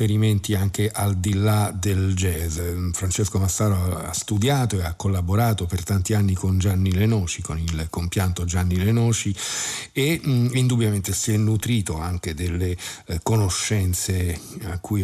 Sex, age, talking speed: male, 50-69, 145 wpm